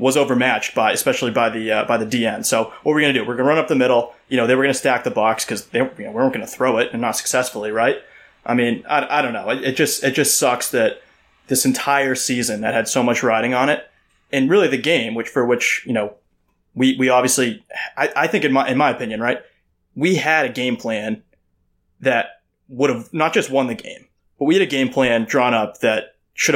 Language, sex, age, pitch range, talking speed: English, male, 20-39, 115-135 Hz, 255 wpm